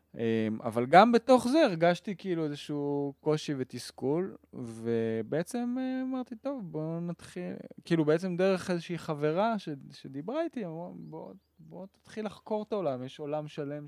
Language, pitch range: Hebrew, 115-160 Hz